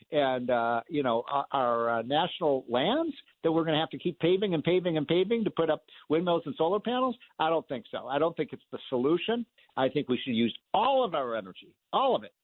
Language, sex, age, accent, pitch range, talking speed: English, male, 60-79, American, 140-200 Hz, 235 wpm